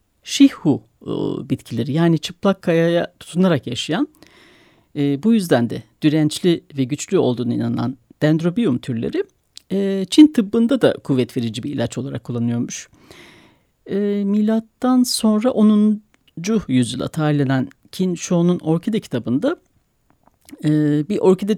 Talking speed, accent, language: 115 wpm, native, Turkish